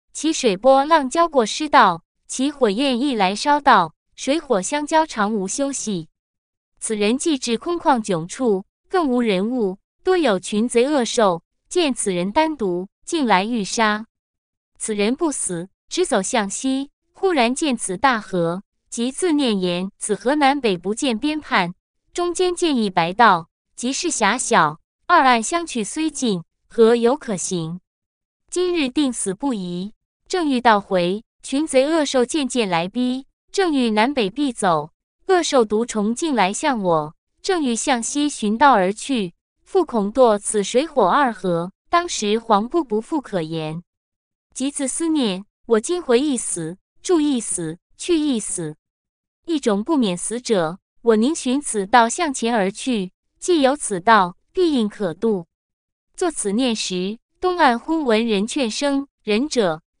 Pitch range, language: 200-290 Hz, English